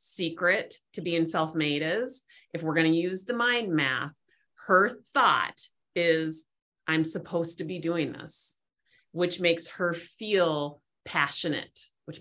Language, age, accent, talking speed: English, 30-49, American, 140 wpm